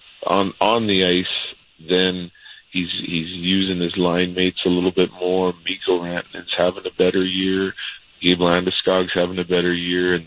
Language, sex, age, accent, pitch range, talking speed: English, male, 40-59, American, 85-95 Hz, 165 wpm